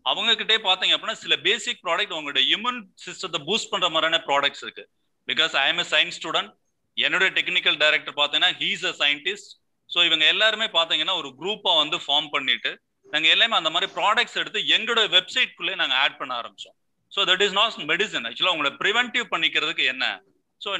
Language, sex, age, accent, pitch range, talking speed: Tamil, male, 30-49, native, 160-220 Hz, 170 wpm